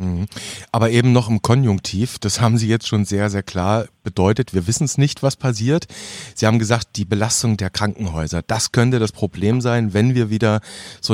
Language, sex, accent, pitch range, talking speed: German, male, German, 105-135 Hz, 195 wpm